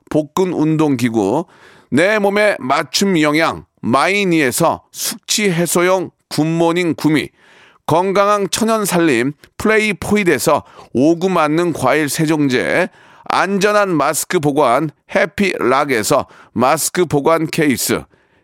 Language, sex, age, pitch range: Korean, male, 40-59, 155-205 Hz